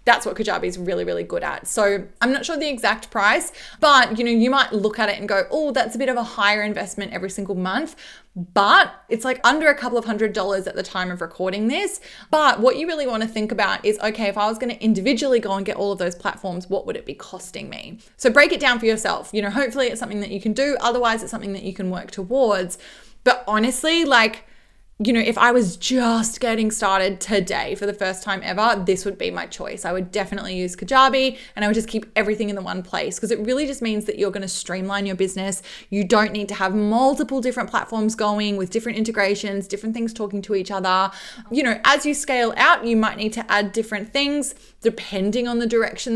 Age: 20-39